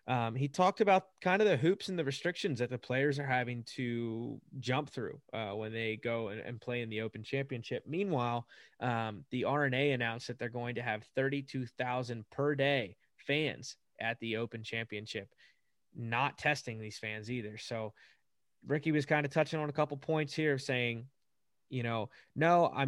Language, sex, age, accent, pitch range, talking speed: English, male, 20-39, American, 120-145 Hz, 185 wpm